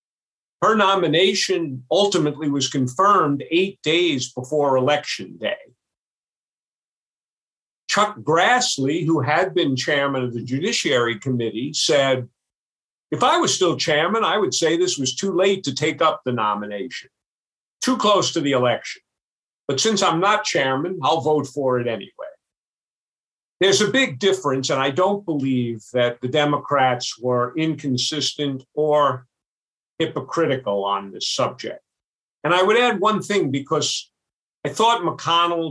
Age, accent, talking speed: 50-69, American, 135 wpm